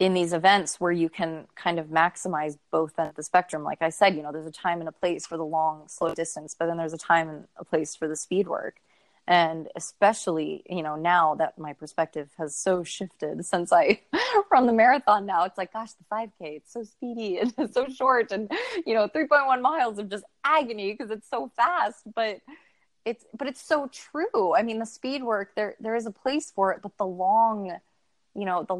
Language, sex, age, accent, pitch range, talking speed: English, female, 20-39, American, 165-205 Hz, 220 wpm